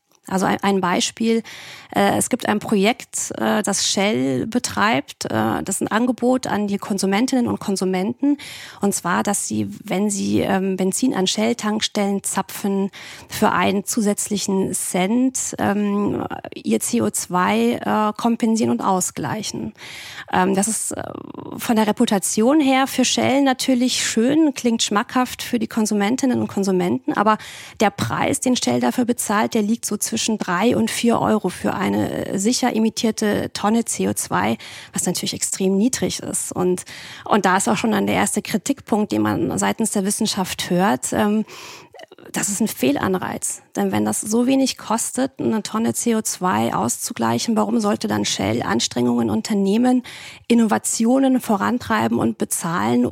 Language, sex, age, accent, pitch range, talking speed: German, female, 30-49, German, 185-235 Hz, 140 wpm